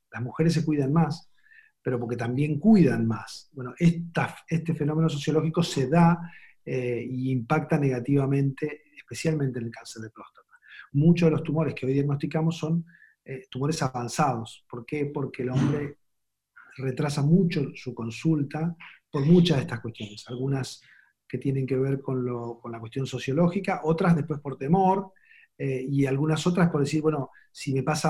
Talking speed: 160 wpm